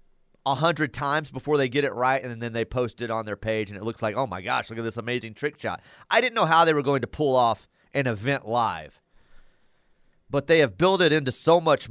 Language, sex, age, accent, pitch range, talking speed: English, male, 30-49, American, 120-165 Hz, 245 wpm